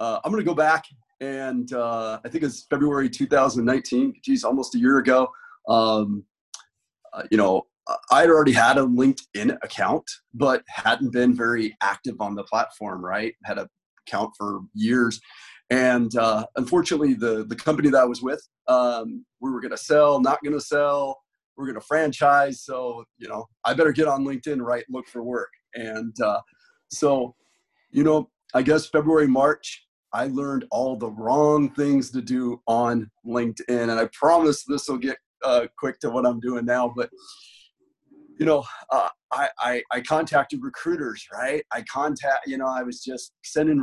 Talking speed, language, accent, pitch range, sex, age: 170 wpm, English, American, 120-155 Hz, male, 30-49